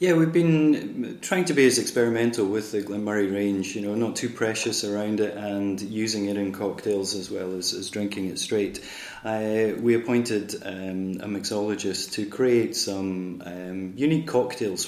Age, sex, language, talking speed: 30-49, male, English, 180 wpm